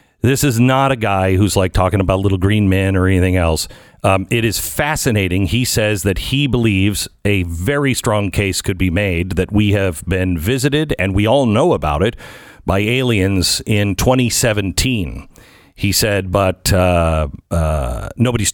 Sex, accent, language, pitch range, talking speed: male, American, English, 90-115 Hz, 170 wpm